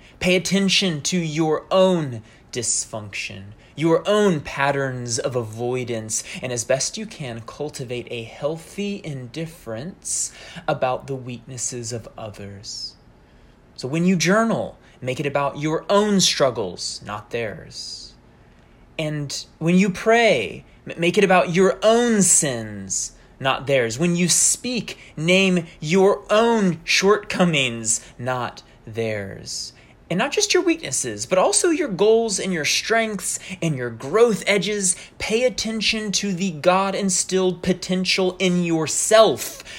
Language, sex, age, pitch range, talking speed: English, male, 20-39, 120-190 Hz, 125 wpm